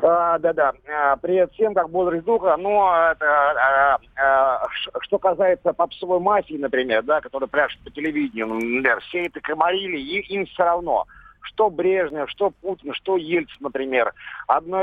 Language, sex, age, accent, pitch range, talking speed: Russian, male, 50-69, native, 140-185 Hz, 150 wpm